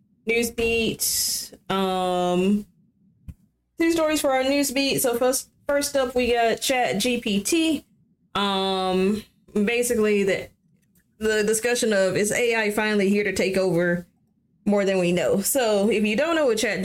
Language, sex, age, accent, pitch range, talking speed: English, female, 20-39, American, 170-210 Hz, 140 wpm